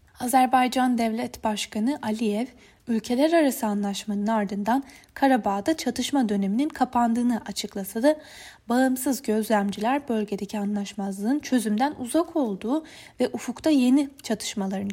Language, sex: Turkish, female